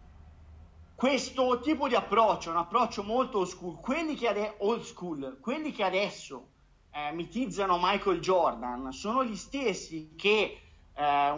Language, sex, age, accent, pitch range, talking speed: Italian, male, 30-49, native, 160-215 Hz, 135 wpm